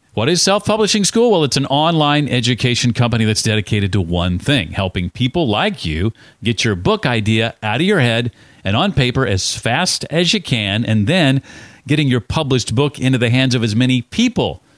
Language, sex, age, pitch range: English, male, 40-59, 110-150 Hz